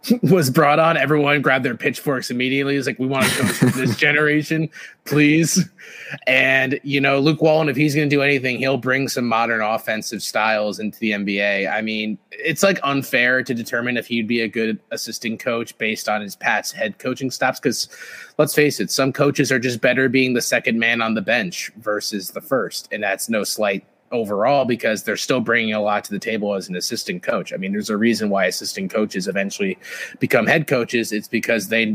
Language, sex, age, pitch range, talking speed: English, male, 30-49, 110-140 Hz, 205 wpm